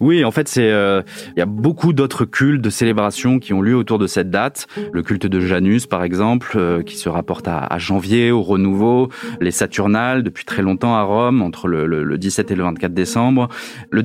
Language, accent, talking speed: French, French, 220 wpm